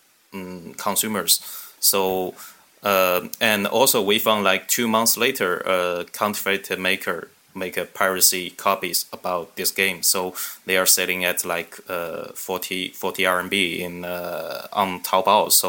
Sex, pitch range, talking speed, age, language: male, 90-100 Hz, 145 wpm, 20-39, English